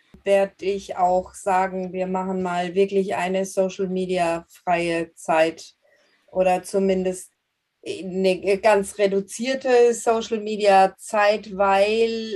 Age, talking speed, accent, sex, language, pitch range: 30-49, 105 wpm, German, female, German, 185-215 Hz